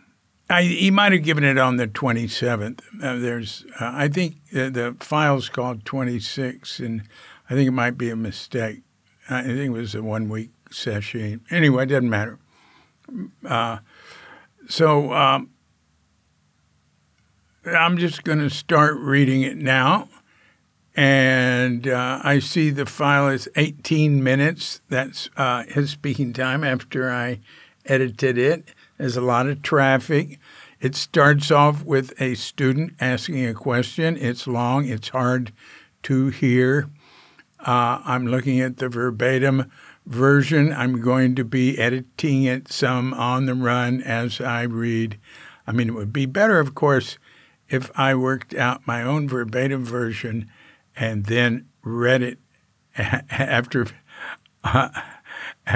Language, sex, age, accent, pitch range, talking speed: English, male, 60-79, American, 120-140 Hz, 140 wpm